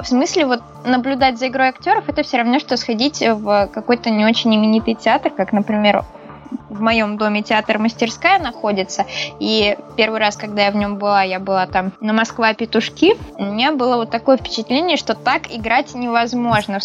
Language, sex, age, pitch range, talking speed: Russian, female, 20-39, 215-265 Hz, 180 wpm